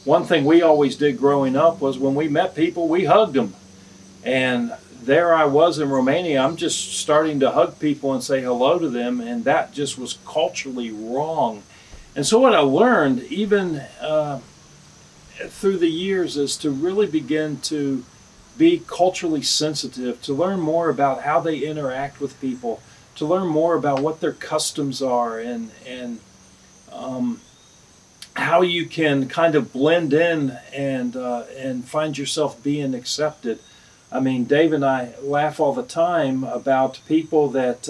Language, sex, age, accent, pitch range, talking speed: English, male, 40-59, American, 130-155 Hz, 160 wpm